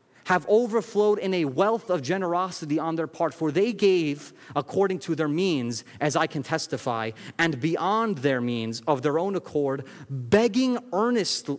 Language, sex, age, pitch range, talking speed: English, male, 30-49, 130-165 Hz, 160 wpm